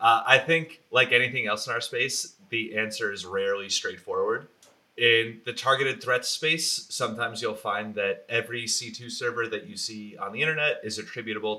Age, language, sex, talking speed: 30-49, English, male, 175 wpm